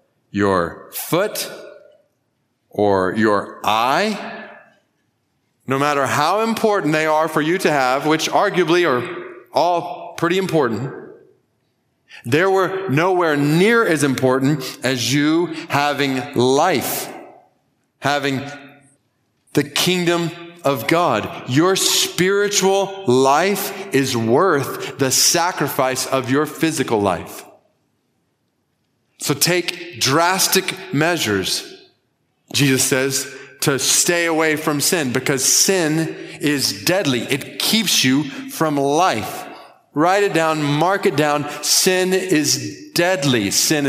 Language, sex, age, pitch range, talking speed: English, male, 40-59, 135-175 Hz, 105 wpm